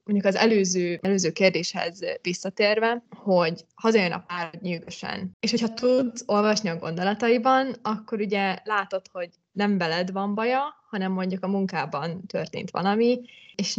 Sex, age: female, 20-39